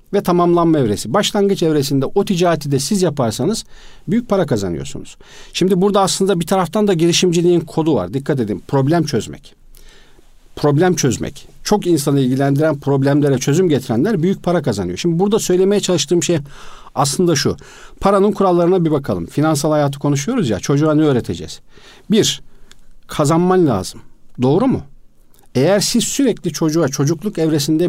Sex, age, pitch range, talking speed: male, 50-69, 135-180 Hz, 140 wpm